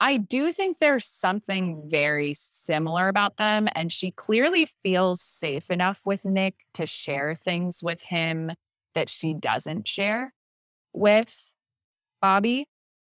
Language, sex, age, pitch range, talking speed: English, female, 20-39, 150-210 Hz, 125 wpm